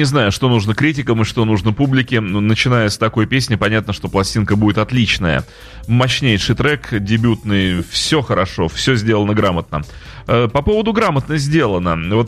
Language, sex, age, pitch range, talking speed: Russian, male, 30-49, 100-125 Hz, 150 wpm